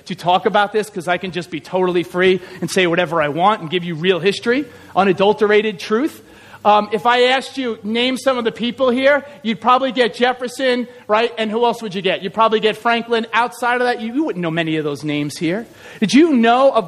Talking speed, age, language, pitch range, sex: 230 wpm, 40-59, English, 215-265 Hz, male